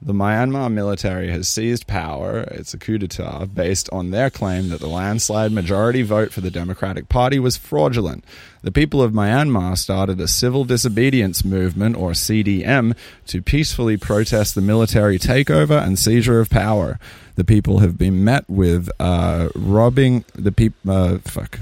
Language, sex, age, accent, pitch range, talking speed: English, male, 20-39, Australian, 95-115 Hz, 160 wpm